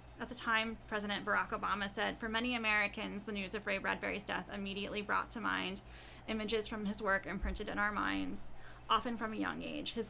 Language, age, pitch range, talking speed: English, 20-39, 205-240 Hz, 200 wpm